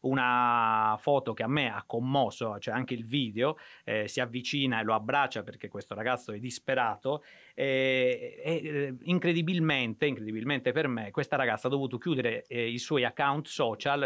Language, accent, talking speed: Italian, native, 160 wpm